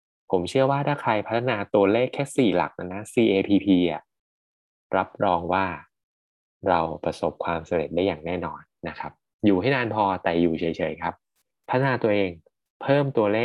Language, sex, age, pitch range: Thai, male, 20-39, 95-135 Hz